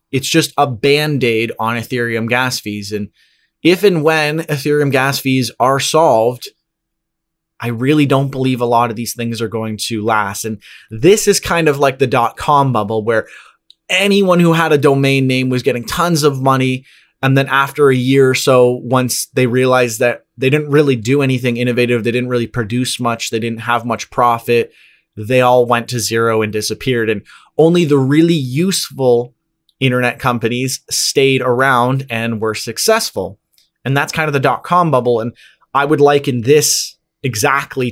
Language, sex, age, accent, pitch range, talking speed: English, male, 20-39, American, 120-145 Hz, 175 wpm